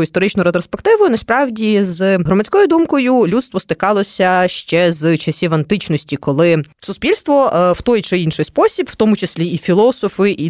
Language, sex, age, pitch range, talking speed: Ukrainian, female, 20-39, 155-215 Hz, 145 wpm